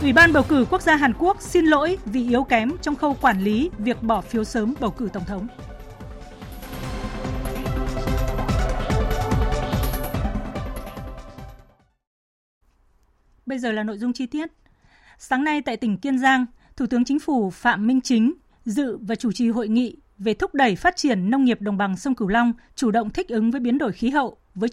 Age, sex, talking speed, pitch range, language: 20-39, female, 175 wpm, 215-275 Hz, Vietnamese